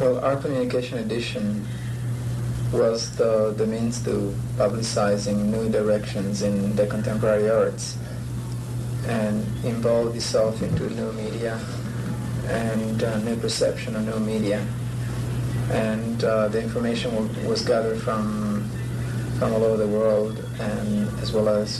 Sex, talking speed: male, 125 wpm